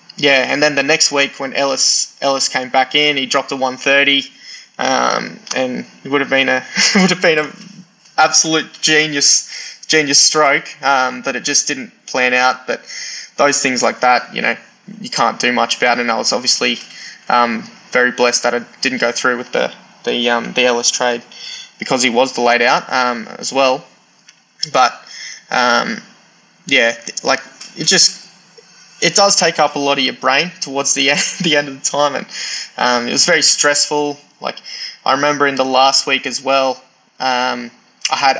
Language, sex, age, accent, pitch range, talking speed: English, male, 20-39, Australian, 130-150 Hz, 185 wpm